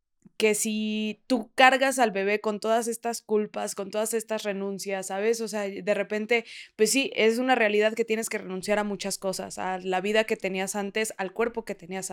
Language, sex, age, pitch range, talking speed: Spanish, female, 20-39, 210-255 Hz, 205 wpm